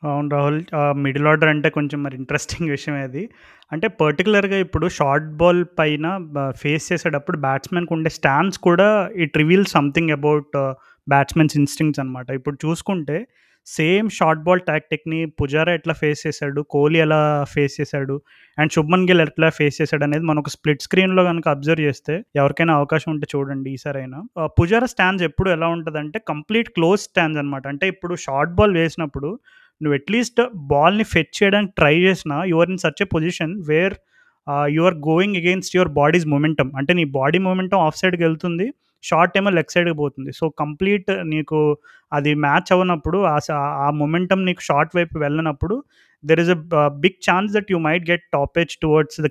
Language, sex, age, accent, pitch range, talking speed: Telugu, male, 20-39, native, 145-180 Hz, 165 wpm